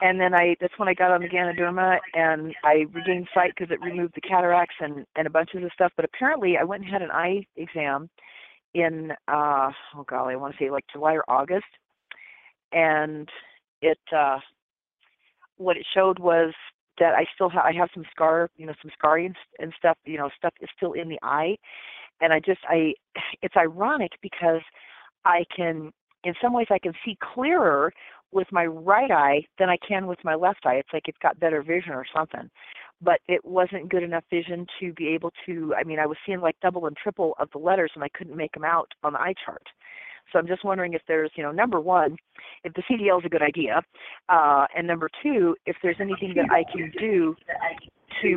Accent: American